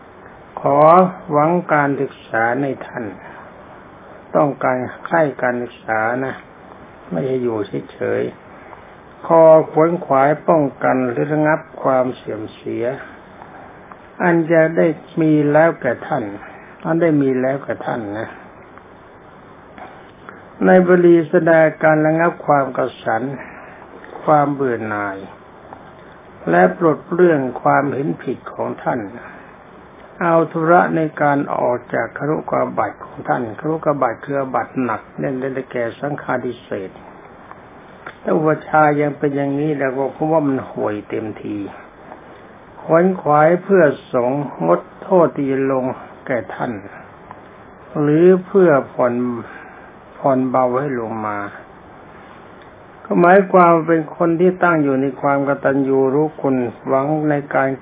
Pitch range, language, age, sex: 130-160 Hz, Thai, 60-79, male